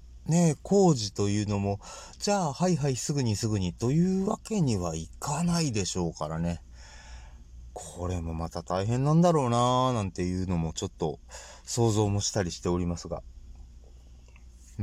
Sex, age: male, 30-49